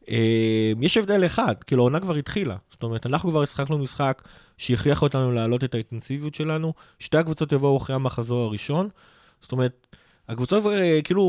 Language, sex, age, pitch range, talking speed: Hebrew, male, 30-49, 120-155 Hz, 165 wpm